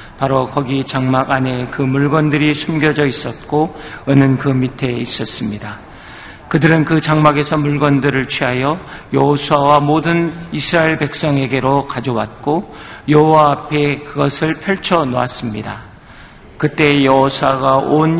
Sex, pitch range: male, 130-150 Hz